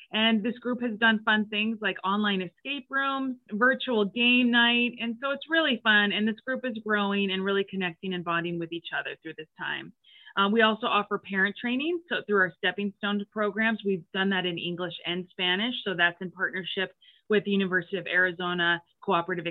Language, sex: English, female